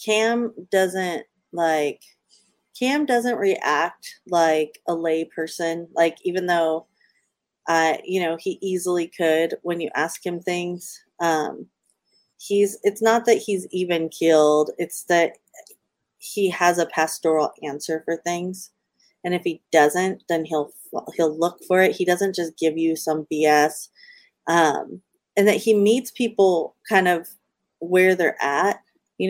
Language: English